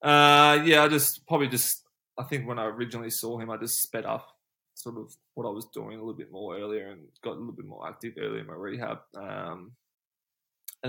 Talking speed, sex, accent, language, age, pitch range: 225 wpm, male, Australian, English, 20-39, 110-125 Hz